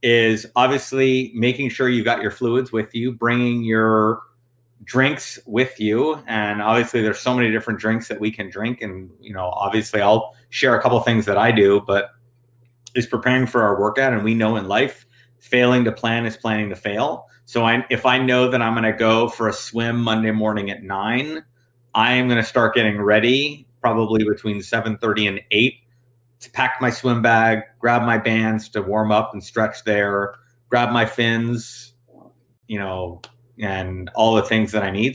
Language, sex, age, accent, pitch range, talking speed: English, male, 30-49, American, 110-125 Hz, 190 wpm